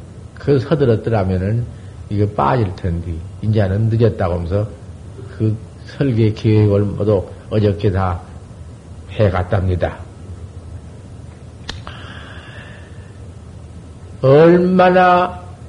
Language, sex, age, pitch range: Korean, male, 50-69, 95-135 Hz